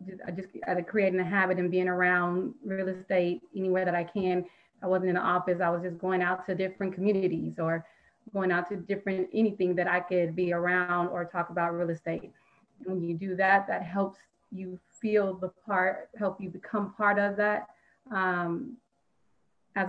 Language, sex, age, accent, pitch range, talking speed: English, female, 30-49, American, 180-210 Hz, 185 wpm